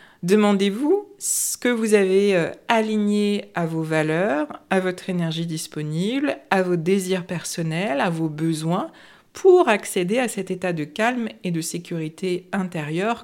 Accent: French